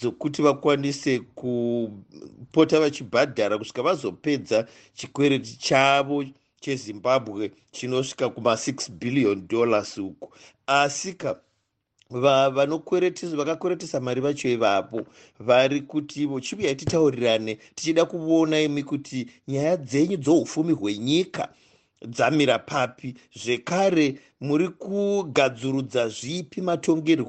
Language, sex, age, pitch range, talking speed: English, male, 50-69, 125-155 Hz, 90 wpm